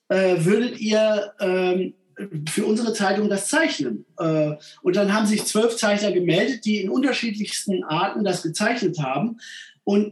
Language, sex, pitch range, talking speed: English, male, 180-235 Hz, 140 wpm